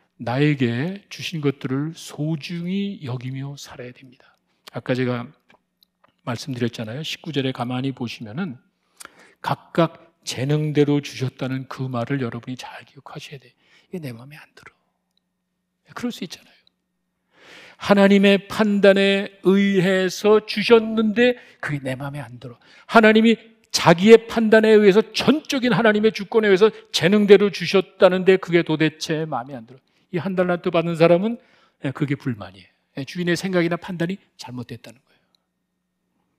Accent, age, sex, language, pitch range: native, 40-59, male, Korean, 140-200 Hz